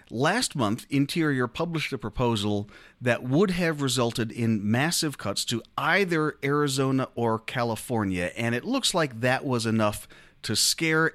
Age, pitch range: 40-59, 110-150 Hz